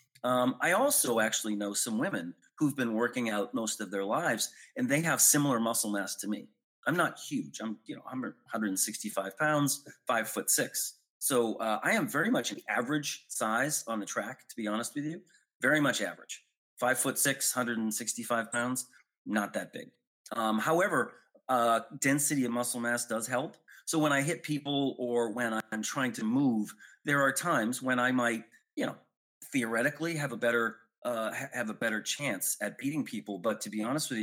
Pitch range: 110-145 Hz